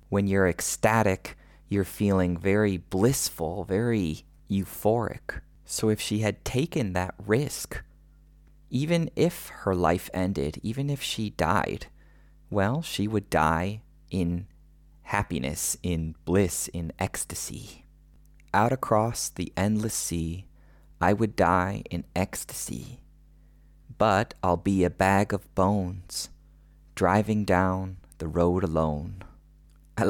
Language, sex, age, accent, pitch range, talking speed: English, male, 30-49, American, 80-100 Hz, 115 wpm